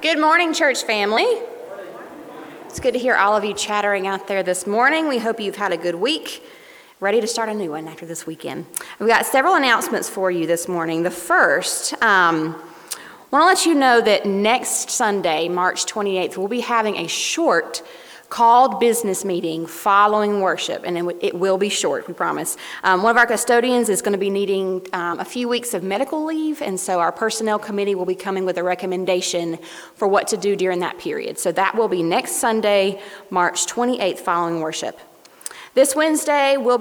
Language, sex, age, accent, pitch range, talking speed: English, female, 30-49, American, 190-260 Hz, 190 wpm